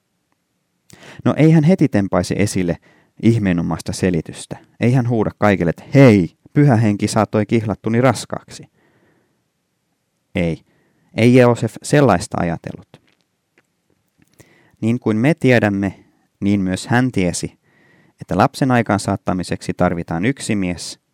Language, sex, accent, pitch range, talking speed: Finnish, male, native, 90-120 Hz, 105 wpm